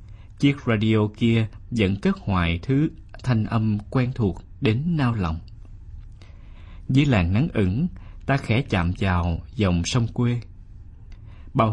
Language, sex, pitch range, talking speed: Vietnamese, male, 95-125 Hz, 135 wpm